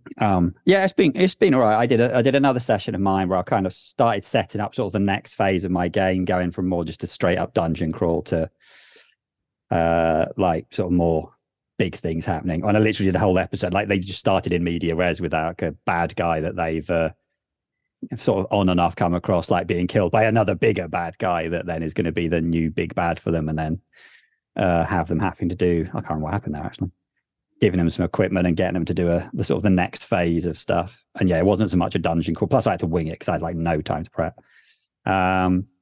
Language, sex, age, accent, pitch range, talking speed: English, male, 30-49, British, 85-110 Hz, 260 wpm